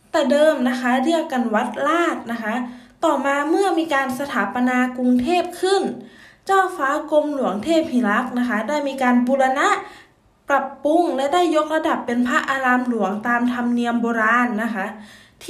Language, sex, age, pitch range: Thai, female, 20-39, 245-325 Hz